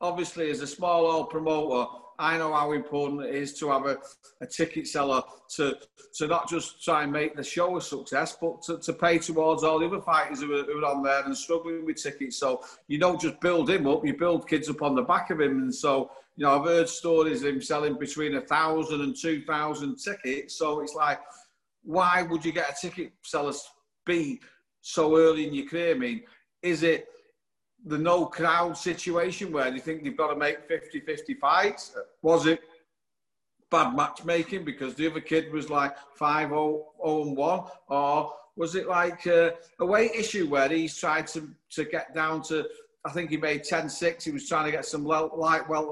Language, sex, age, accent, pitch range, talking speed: English, male, 40-59, British, 150-170 Hz, 200 wpm